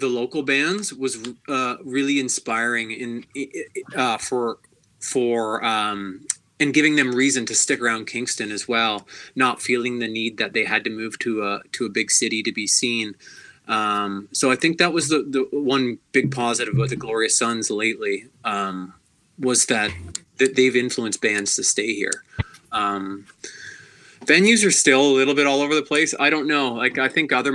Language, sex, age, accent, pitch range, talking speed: English, male, 20-39, American, 110-130 Hz, 185 wpm